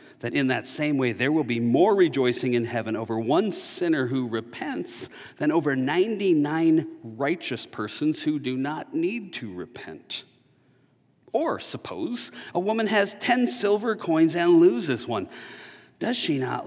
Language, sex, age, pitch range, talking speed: English, male, 40-59, 125-185 Hz, 150 wpm